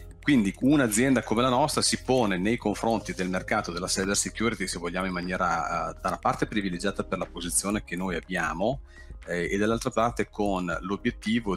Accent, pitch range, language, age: native, 85-105 Hz, Italian, 40-59